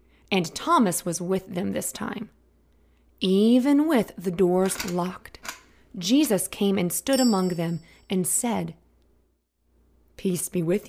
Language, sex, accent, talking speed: English, female, American, 125 wpm